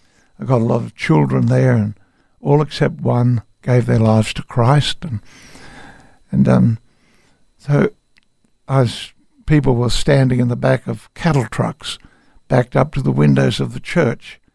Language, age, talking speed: English, 60-79, 155 wpm